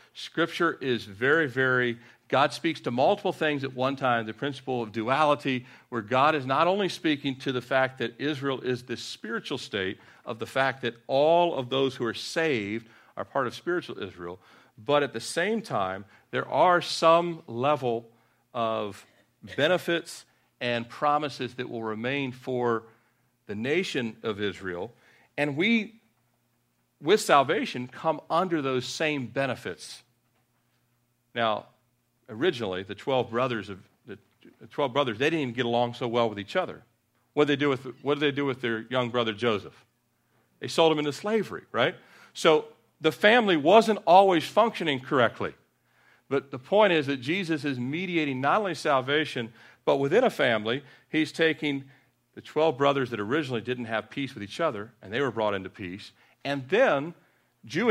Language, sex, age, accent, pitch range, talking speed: English, male, 50-69, American, 120-155 Hz, 160 wpm